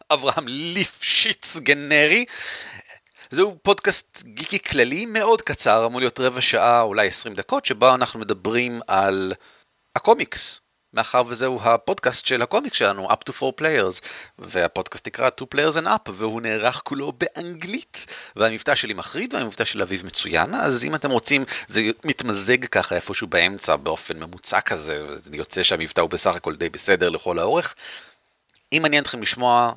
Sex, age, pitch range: male, 30-49, 110-165 Hz